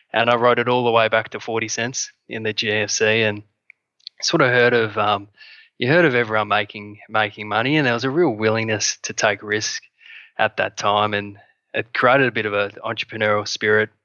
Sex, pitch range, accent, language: male, 105-120 Hz, Australian, English